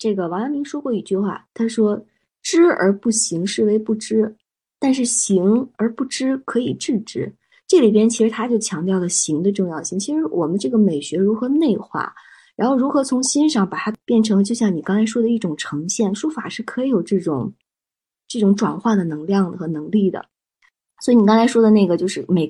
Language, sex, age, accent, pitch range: Chinese, female, 20-39, native, 190-250 Hz